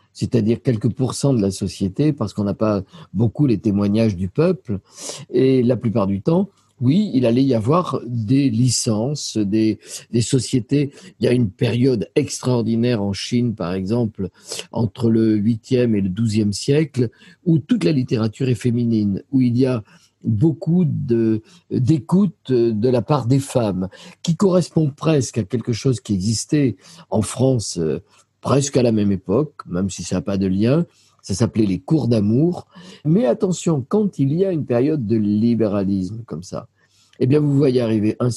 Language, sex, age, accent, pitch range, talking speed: French, male, 50-69, French, 110-140 Hz, 170 wpm